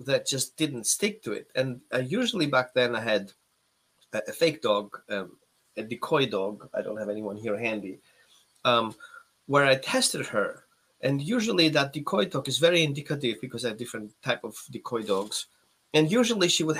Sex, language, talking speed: male, English, 180 wpm